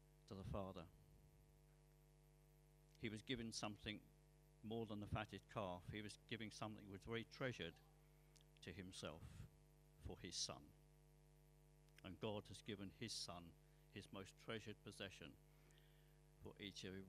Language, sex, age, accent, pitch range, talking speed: English, male, 50-69, British, 115-155 Hz, 135 wpm